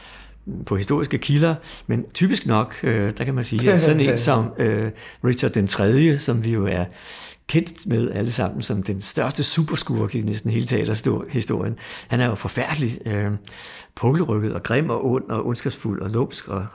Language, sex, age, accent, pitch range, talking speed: Danish, male, 50-69, native, 105-140 Hz, 175 wpm